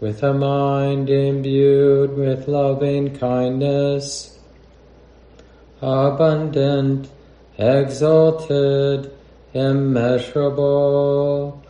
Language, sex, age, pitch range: English, male, 40-59, 135-145 Hz